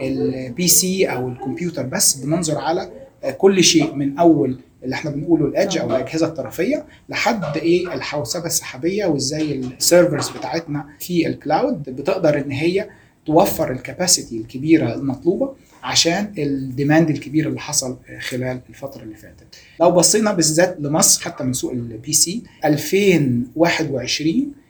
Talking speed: 130 wpm